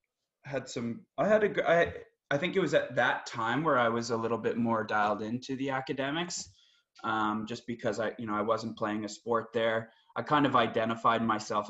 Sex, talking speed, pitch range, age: male, 210 wpm, 110-130 Hz, 20-39